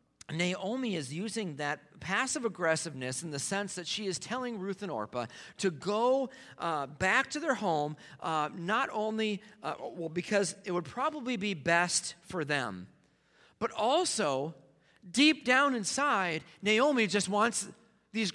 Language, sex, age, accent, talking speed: English, male, 40-59, American, 145 wpm